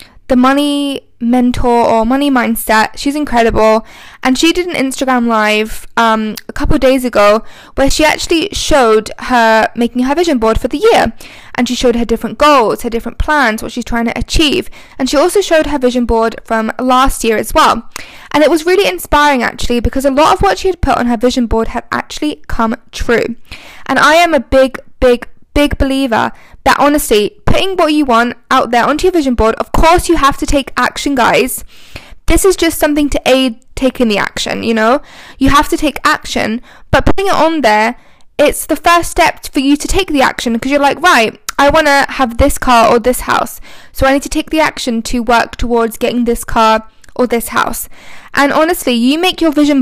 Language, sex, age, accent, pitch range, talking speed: English, female, 10-29, British, 235-300 Hz, 210 wpm